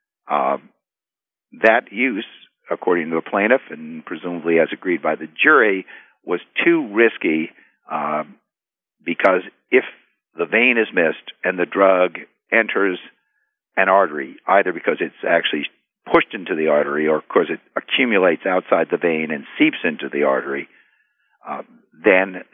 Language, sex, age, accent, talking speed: English, male, 50-69, American, 140 wpm